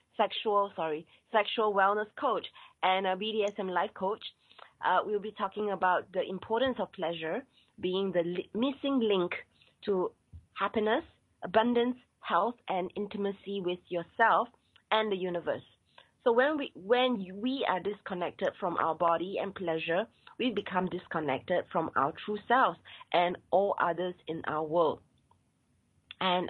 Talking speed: 140 wpm